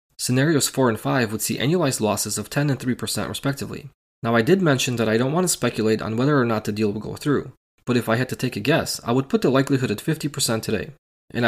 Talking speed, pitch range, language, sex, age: 255 wpm, 110-145 Hz, English, male, 20-39